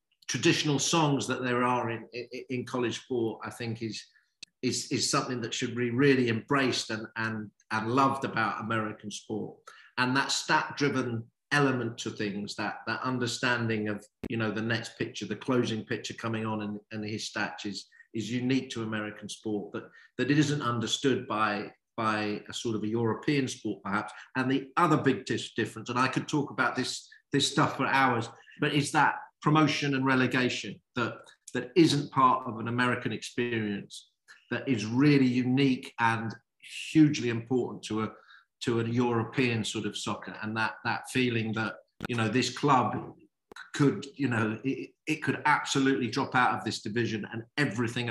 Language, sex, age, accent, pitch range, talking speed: English, male, 50-69, British, 110-130 Hz, 175 wpm